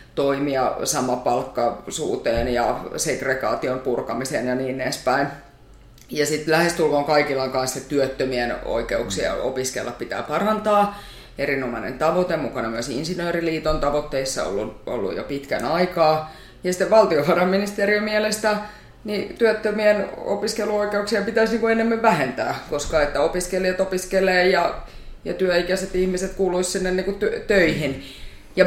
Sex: female